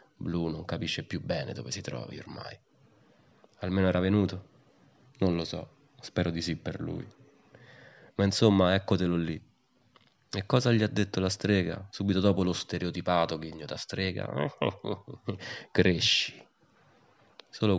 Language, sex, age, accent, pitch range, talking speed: Italian, male, 30-49, native, 85-100 Hz, 130 wpm